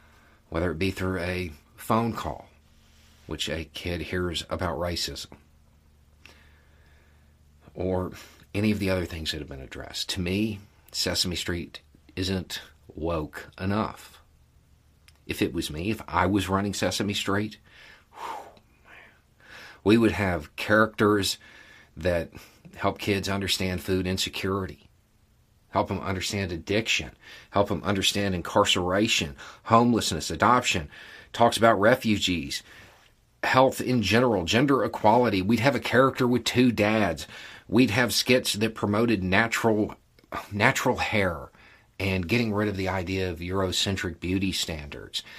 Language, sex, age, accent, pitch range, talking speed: English, male, 50-69, American, 80-105 Hz, 125 wpm